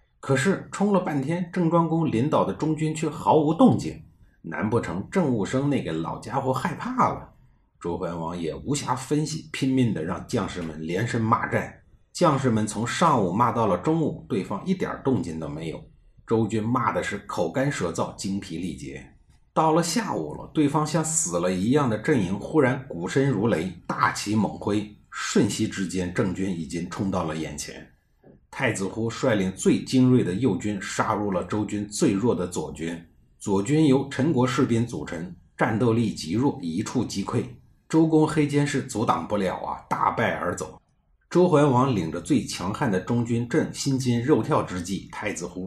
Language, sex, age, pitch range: Chinese, male, 50-69, 95-145 Hz